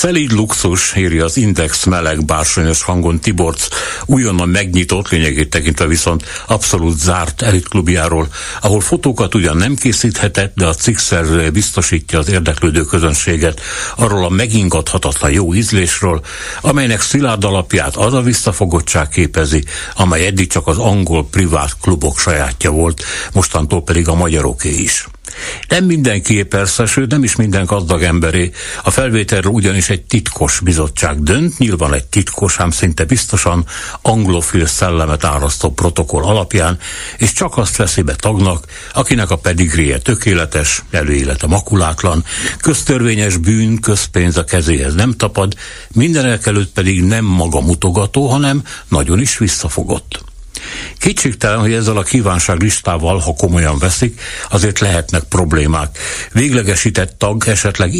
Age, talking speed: 60-79, 130 wpm